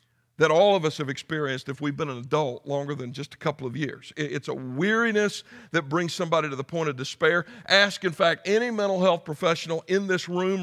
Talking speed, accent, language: 220 wpm, American, English